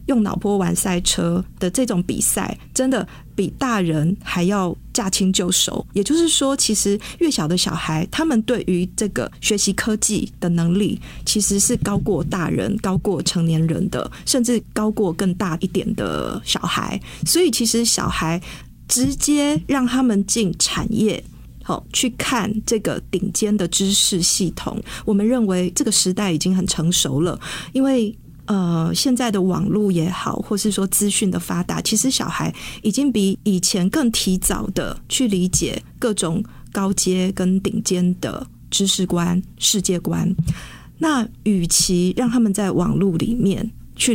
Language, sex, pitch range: Chinese, female, 180-220 Hz